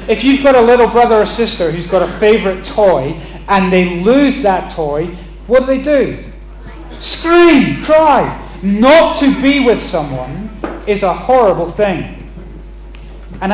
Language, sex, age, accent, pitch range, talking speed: English, male, 30-49, British, 170-240 Hz, 150 wpm